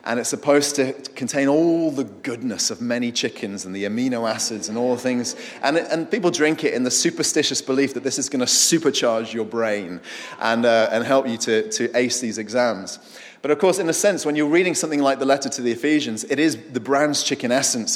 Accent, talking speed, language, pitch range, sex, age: British, 230 wpm, English, 115-145 Hz, male, 30-49